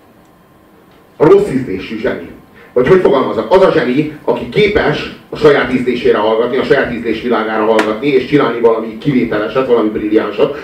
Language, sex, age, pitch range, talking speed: Hungarian, male, 40-59, 130-185 Hz, 145 wpm